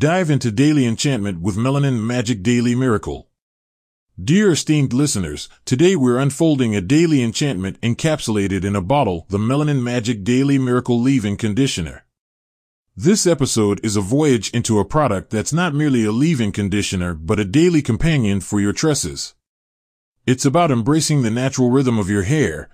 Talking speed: 155 wpm